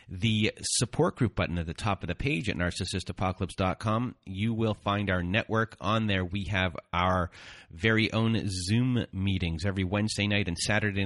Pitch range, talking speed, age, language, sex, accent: 95-115 Hz, 170 wpm, 30-49, English, male, American